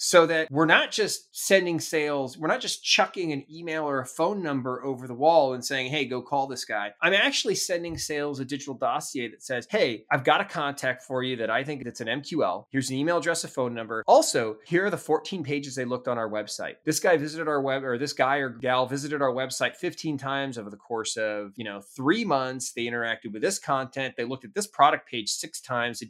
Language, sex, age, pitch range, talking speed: English, male, 20-39, 120-155 Hz, 240 wpm